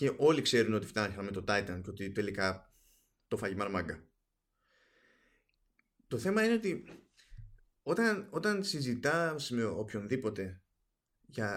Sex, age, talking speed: male, 20-39, 120 wpm